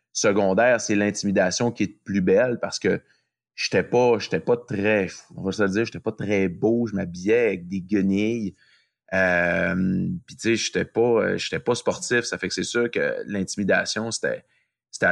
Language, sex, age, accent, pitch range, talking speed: French, male, 30-49, Canadian, 95-120 Hz, 185 wpm